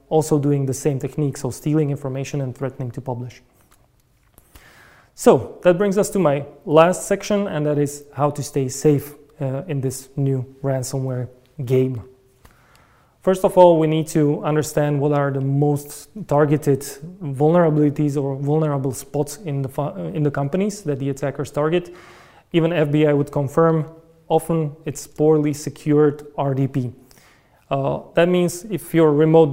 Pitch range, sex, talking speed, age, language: 140-160 Hz, male, 150 wpm, 20-39, Hebrew